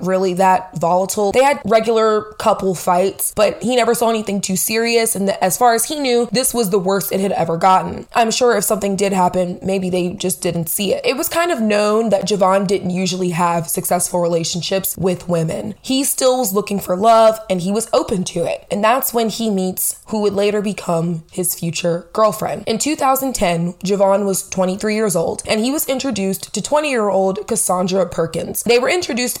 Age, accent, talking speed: 20-39, American, 200 wpm